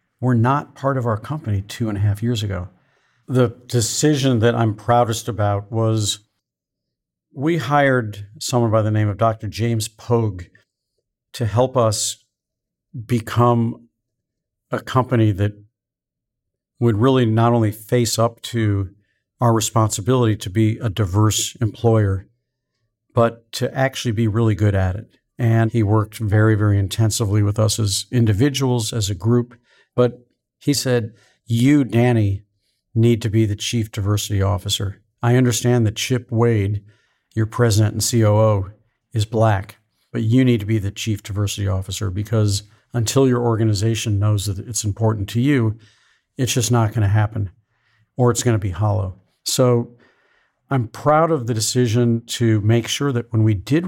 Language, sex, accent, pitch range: English, male, American, 105-120 Hz